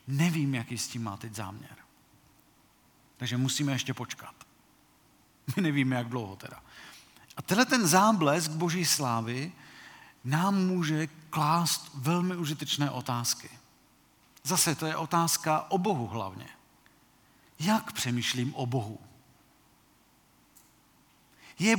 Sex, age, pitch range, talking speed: male, 40-59, 135-200 Hz, 110 wpm